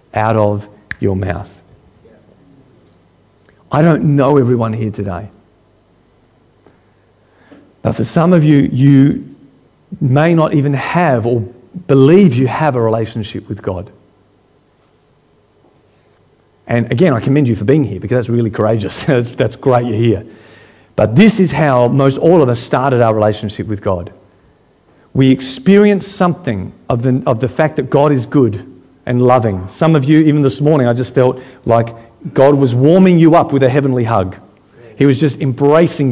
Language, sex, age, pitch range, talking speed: English, male, 50-69, 105-145 Hz, 155 wpm